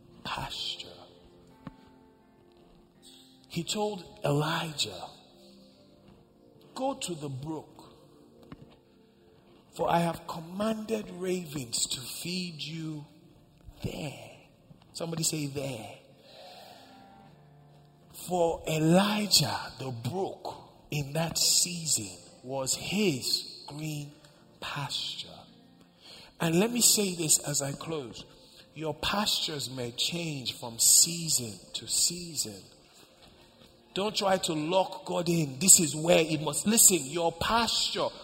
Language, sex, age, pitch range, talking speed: English, male, 50-69, 130-195 Hz, 95 wpm